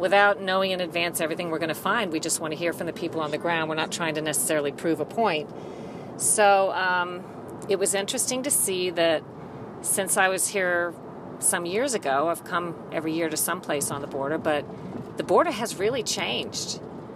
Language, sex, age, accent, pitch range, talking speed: English, female, 40-59, American, 160-195 Hz, 200 wpm